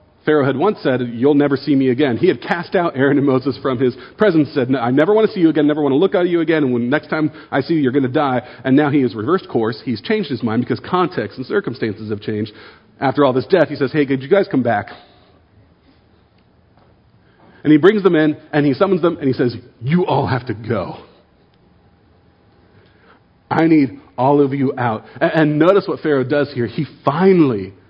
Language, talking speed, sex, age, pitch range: English, 225 wpm, male, 40-59, 105-140 Hz